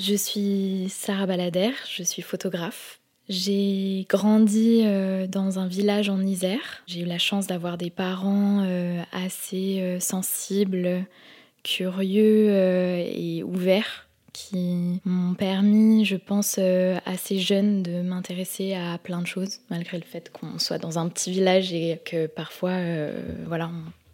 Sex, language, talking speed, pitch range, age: female, French, 130 wpm, 180-205 Hz, 20-39